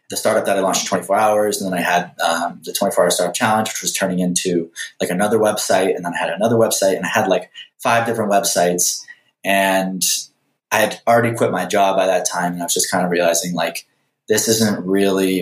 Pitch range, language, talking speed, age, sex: 85-100 Hz, English, 225 wpm, 20-39, male